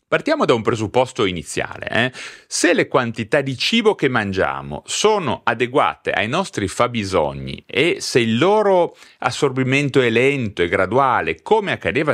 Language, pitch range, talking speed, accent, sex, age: Italian, 100-155 Hz, 145 wpm, native, male, 40-59